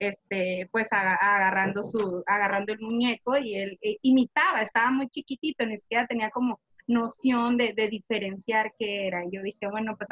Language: Spanish